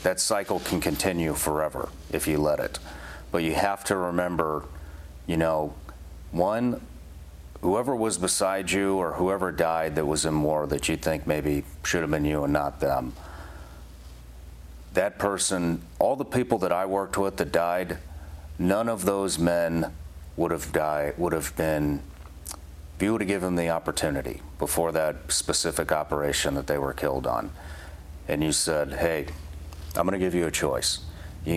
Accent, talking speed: American, 170 wpm